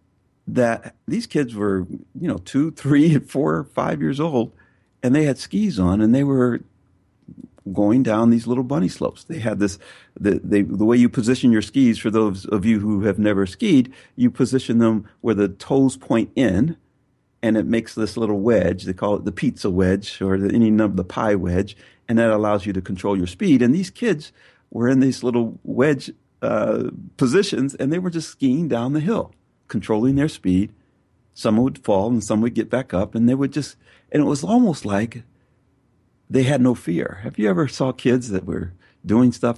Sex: male